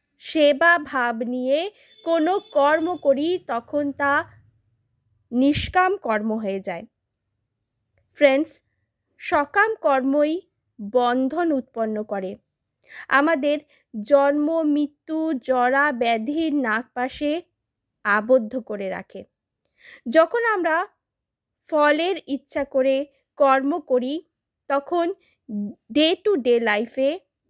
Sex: female